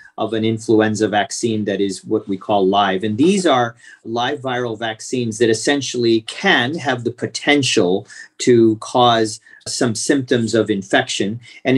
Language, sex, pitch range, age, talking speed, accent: English, male, 110-125 Hz, 40-59, 150 wpm, American